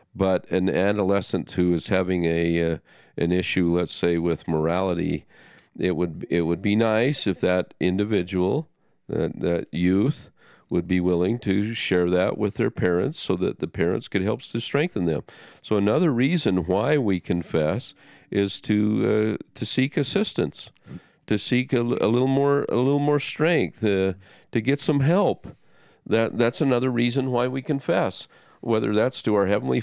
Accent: American